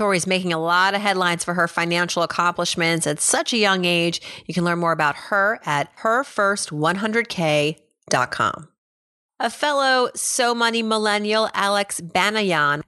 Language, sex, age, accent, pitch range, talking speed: English, female, 30-49, American, 170-230 Hz, 140 wpm